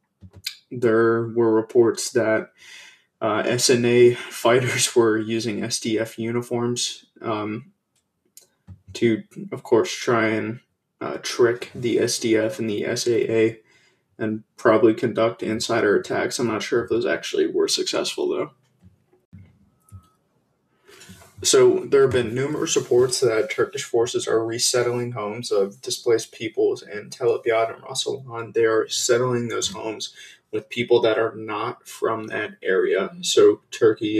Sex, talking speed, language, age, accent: male, 125 wpm, English, 20-39, American